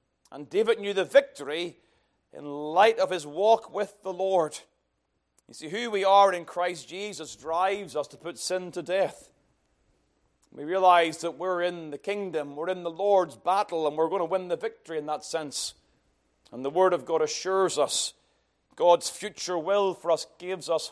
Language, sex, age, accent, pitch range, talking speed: English, male, 40-59, British, 120-195 Hz, 185 wpm